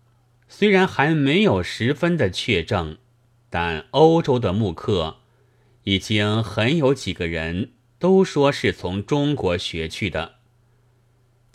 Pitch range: 95-125 Hz